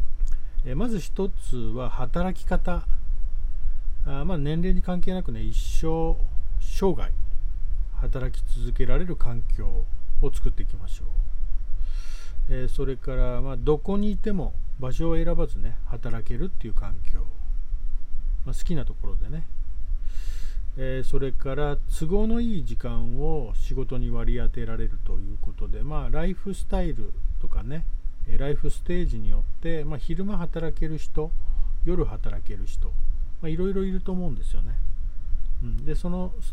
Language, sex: Japanese, male